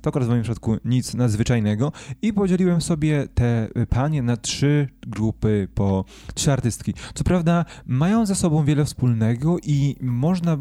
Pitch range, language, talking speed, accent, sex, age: 115-150 Hz, Polish, 155 wpm, native, male, 20-39